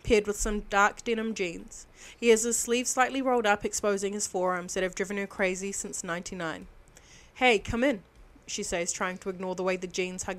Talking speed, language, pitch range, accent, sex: 210 wpm, English, 180-210 Hz, Australian, female